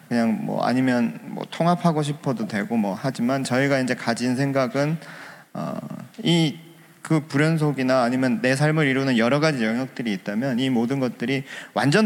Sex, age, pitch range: male, 40-59, 125-160 Hz